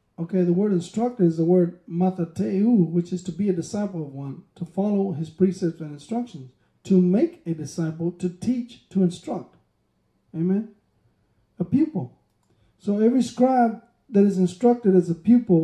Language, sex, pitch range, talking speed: English, male, 165-200 Hz, 160 wpm